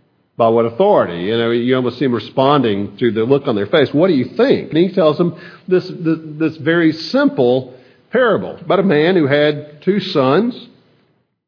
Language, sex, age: English, male, 50-69